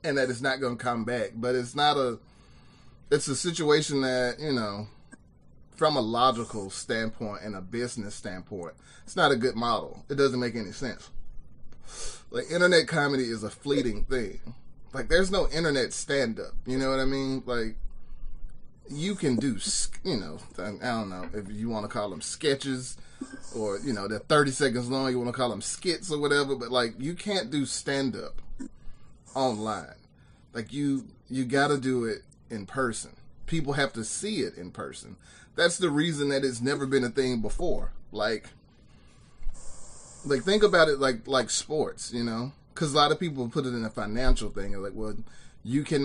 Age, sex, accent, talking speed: 30-49, male, American, 190 wpm